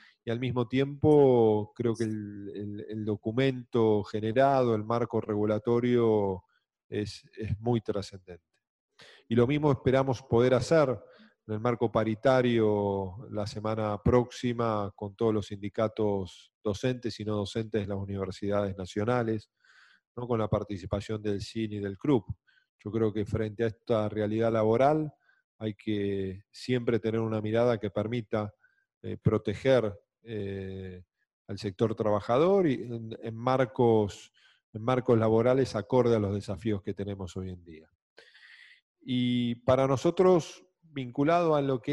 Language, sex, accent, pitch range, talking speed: Spanish, male, Argentinian, 105-125 Hz, 140 wpm